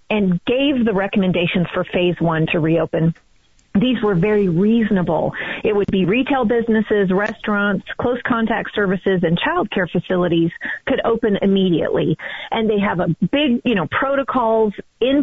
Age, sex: 40-59, female